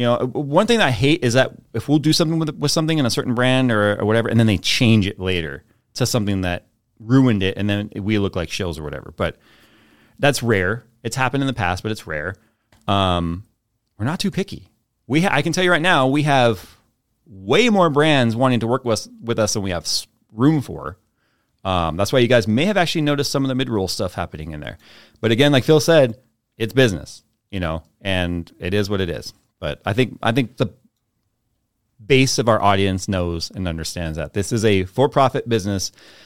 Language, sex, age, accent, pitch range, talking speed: English, male, 30-49, American, 100-140 Hz, 220 wpm